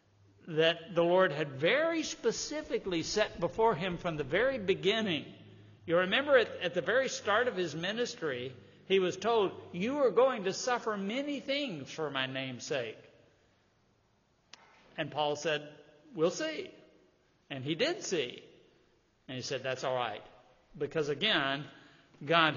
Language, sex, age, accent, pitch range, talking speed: English, male, 60-79, American, 135-185 Hz, 145 wpm